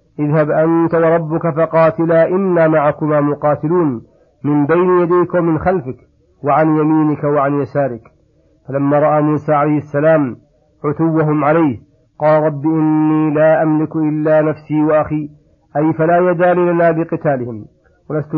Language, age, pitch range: Arabic, 50-69, 145-165 Hz